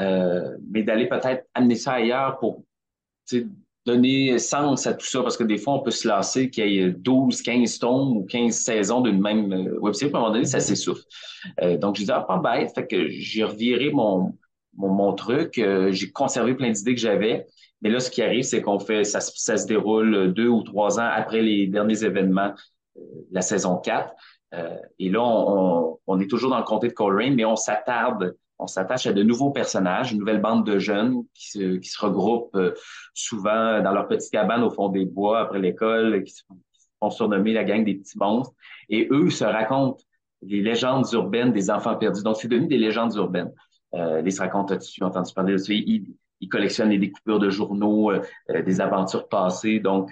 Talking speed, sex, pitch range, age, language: 210 wpm, male, 100-120 Hz, 30-49, French